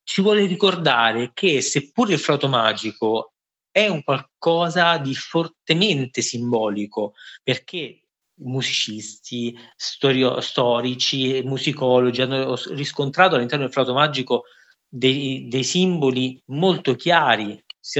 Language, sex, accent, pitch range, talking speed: Italian, male, native, 120-145 Hz, 105 wpm